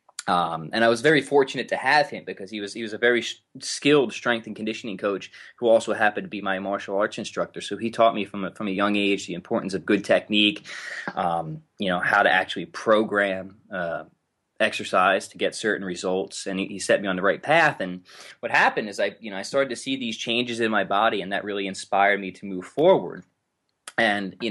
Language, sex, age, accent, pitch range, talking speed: English, male, 20-39, American, 100-120 Hz, 230 wpm